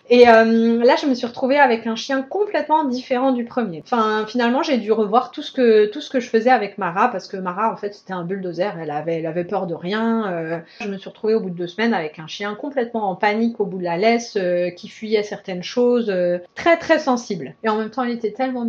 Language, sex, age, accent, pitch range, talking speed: French, female, 30-49, French, 190-250 Hz, 260 wpm